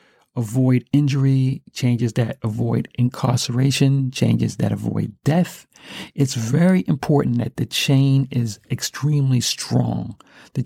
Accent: American